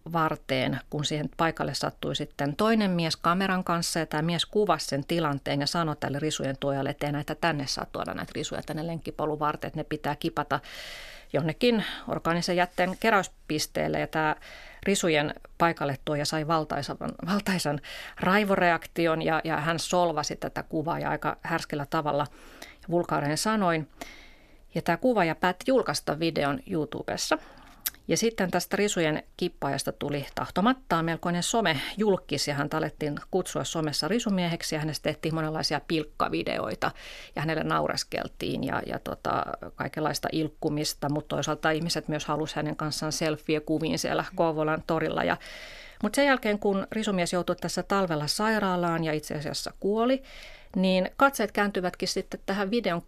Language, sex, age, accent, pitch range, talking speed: Finnish, female, 30-49, native, 150-185 Hz, 140 wpm